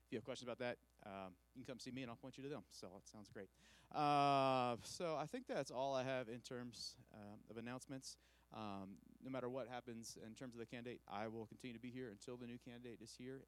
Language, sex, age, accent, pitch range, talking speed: English, male, 30-49, American, 95-120 Hz, 255 wpm